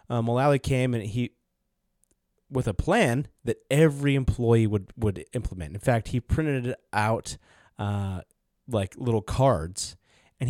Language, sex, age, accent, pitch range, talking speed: English, male, 30-49, American, 105-130 Hz, 135 wpm